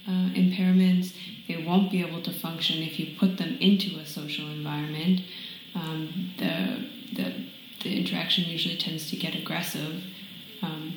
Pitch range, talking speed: 165-195 Hz, 150 wpm